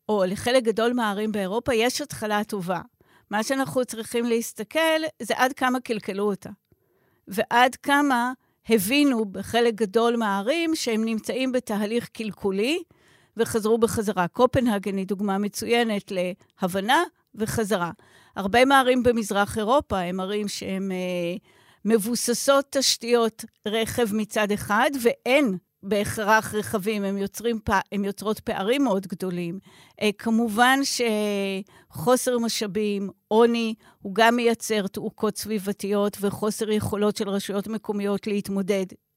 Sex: female